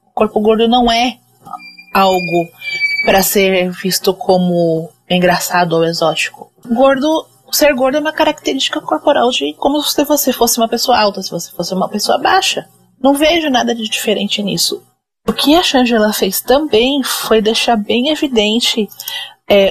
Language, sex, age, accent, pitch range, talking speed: Portuguese, female, 30-49, Brazilian, 180-230 Hz, 150 wpm